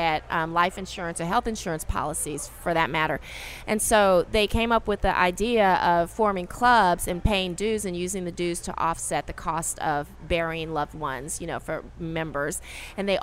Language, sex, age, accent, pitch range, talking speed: English, female, 30-49, American, 165-195 Hz, 190 wpm